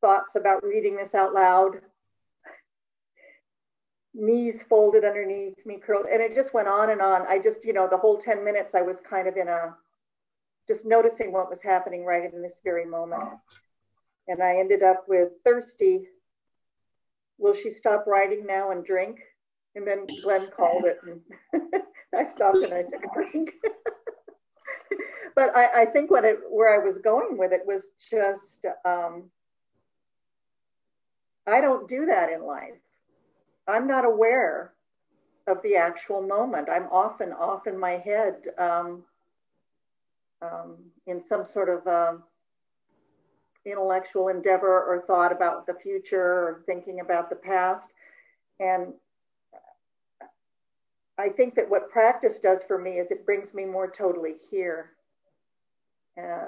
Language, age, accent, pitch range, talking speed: English, 50-69, American, 180-225 Hz, 145 wpm